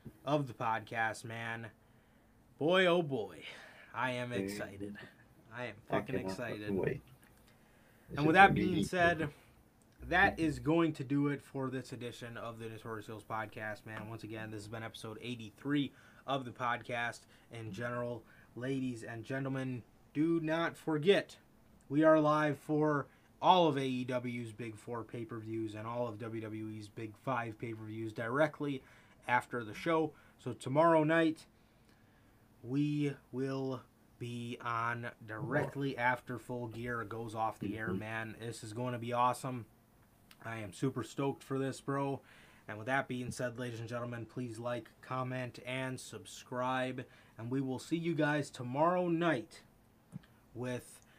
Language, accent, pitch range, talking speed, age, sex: English, American, 110-140 Hz, 145 wpm, 20-39, male